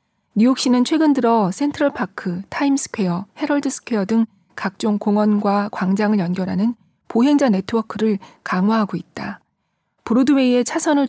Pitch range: 190-235 Hz